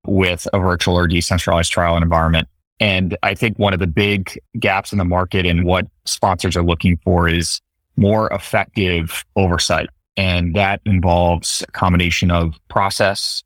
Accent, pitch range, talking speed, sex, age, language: American, 85-100 Hz, 160 wpm, male, 30-49, English